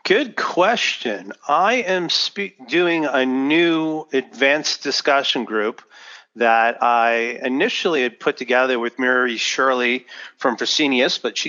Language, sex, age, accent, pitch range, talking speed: English, male, 40-59, American, 120-145 Hz, 120 wpm